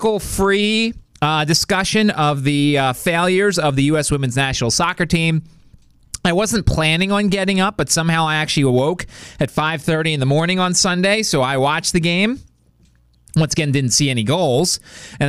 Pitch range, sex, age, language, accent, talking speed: 130-180 Hz, male, 30-49, English, American, 175 wpm